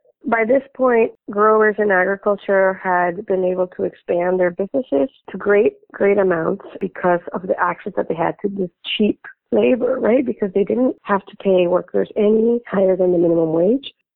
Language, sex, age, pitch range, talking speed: English, female, 30-49, 185-235 Hz, 180 wpm